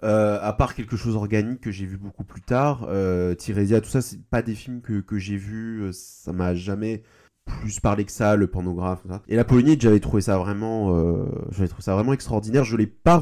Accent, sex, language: French, male, French